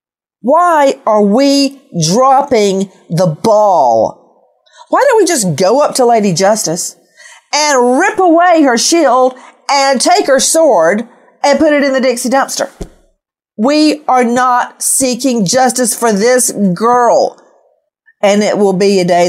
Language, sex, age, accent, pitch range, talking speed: English, female, 50-69, American, 200-295 Hz, 140 wpm